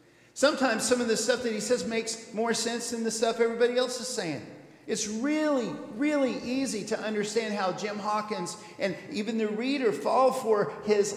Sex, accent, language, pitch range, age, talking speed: male, American, English, 185-245 Hz, 50-69, 185 wpm